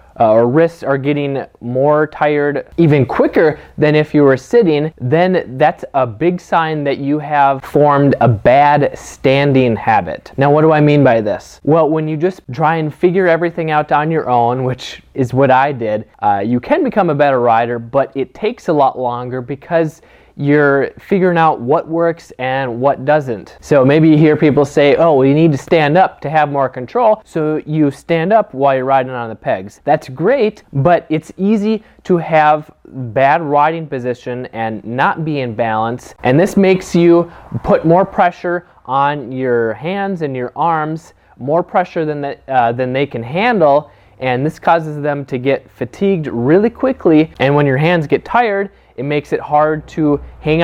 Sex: male